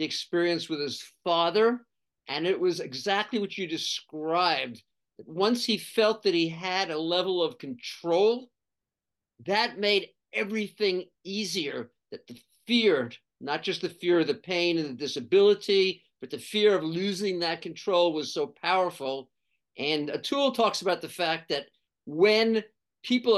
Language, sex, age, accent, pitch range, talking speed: English, male, 50-69, American, 165-215 Hz, 145 wpm